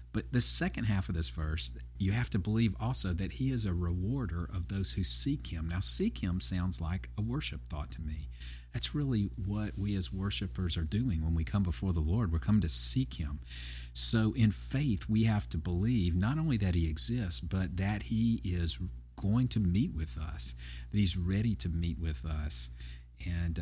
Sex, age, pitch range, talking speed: male, 50-69, 80-105 Hz, 205 wpm